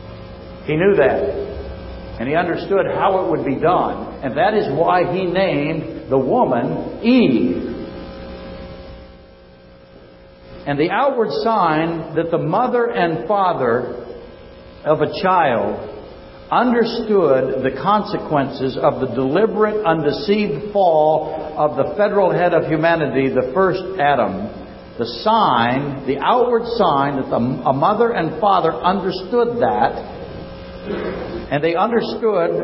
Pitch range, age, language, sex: 145-220 Hz, 60-79, English, male